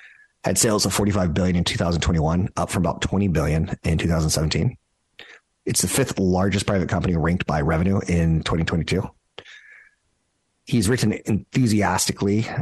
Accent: American